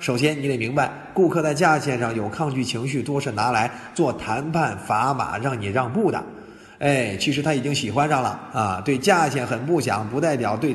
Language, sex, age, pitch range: Chinese, male, 20-39, 120-165 Hz